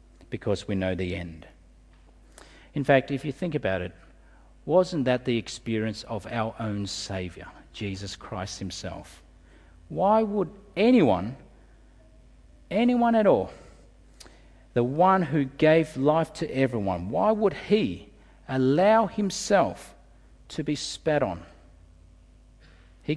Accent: Australian